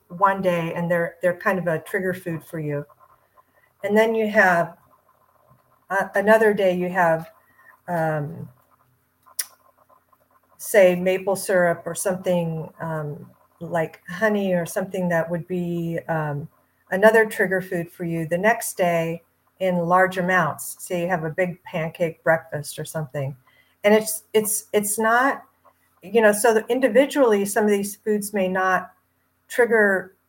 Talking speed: 145 wpm